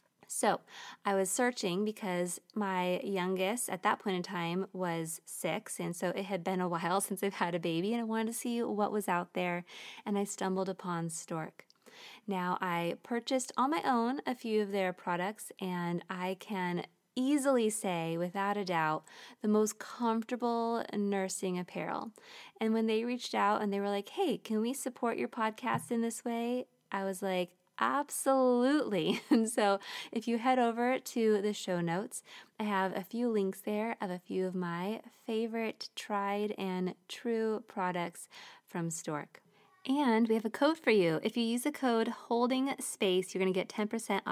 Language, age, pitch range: English, 20-39, 185-235 Hz